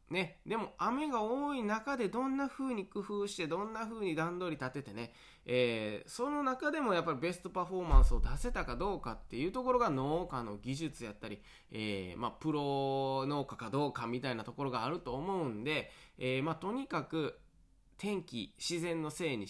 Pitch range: 120-180 Hz